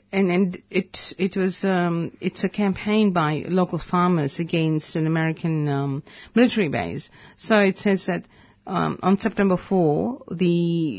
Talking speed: 145 wpm